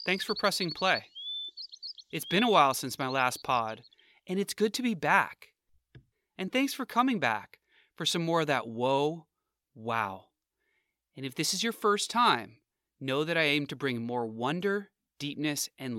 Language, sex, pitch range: English, male, 125-180 Hz